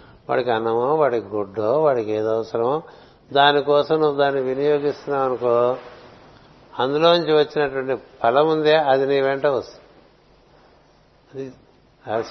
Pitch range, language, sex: 130-150 Hz, Telugu, male